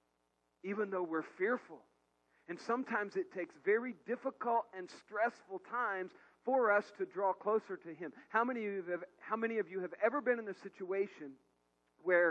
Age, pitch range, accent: 40-59, 155-220 Hz, American